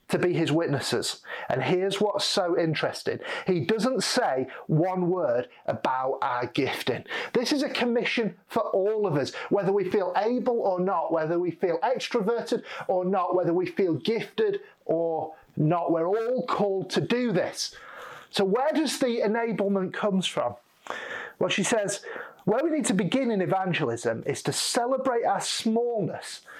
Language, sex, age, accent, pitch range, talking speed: English, male, 40-59, British, 170-250 Hz, 160 wpm